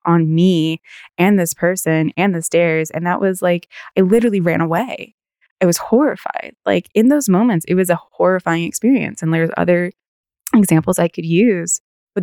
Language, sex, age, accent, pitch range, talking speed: English, female, 20-39, American, 170-205 Hz, 175 wpm